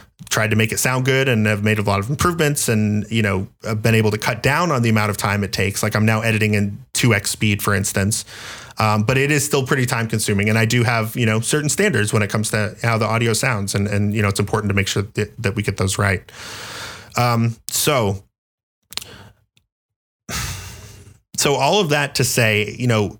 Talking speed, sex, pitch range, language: 220 wpm, male, 105-125 Hz, English